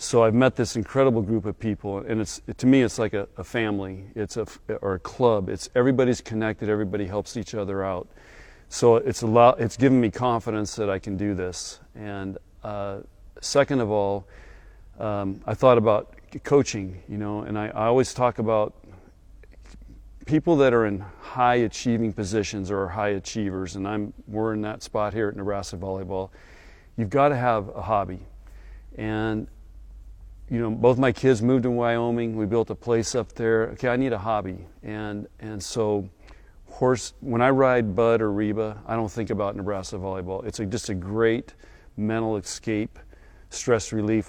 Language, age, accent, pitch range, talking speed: English, 40-59, American, 100-115 Hz, 180 wpm